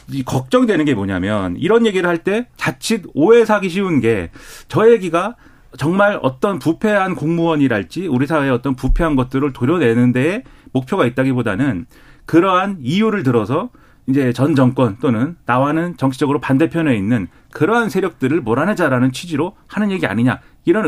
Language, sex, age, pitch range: Korean, male, 40-59, 120-165 Hz